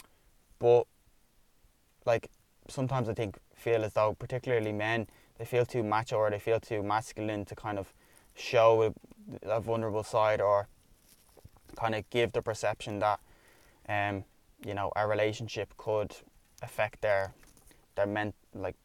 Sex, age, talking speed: male, 10-29, 145 wpm